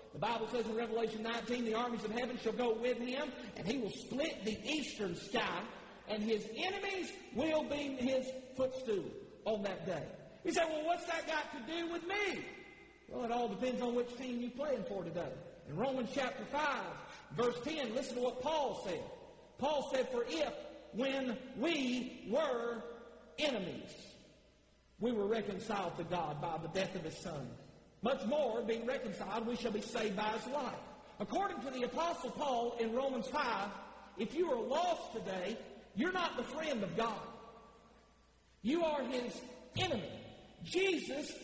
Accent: American